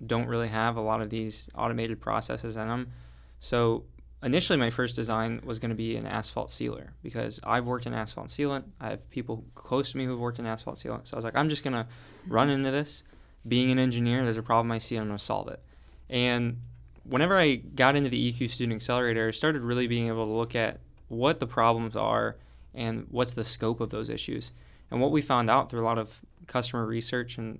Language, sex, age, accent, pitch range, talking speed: English, male, 20-39, American, 110-125 Hz, 225 wpm